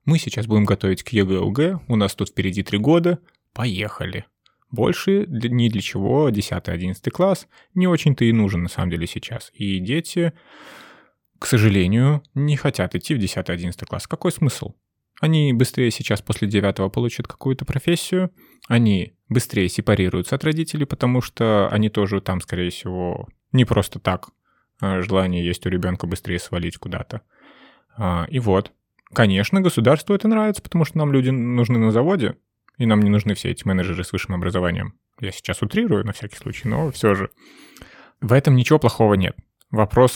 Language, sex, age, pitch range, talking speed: Russian, male, 20-39, 100-130 Hz, 160 wpm